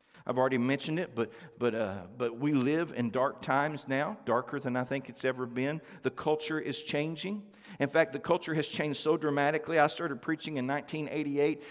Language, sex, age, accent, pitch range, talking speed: English, male, 50-69, American, 135-165 Hz, 195 wpm